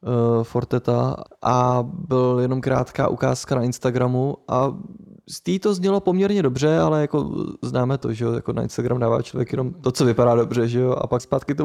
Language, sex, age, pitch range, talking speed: Czech, male, 20-39, 120-145 Hz, 185 wpm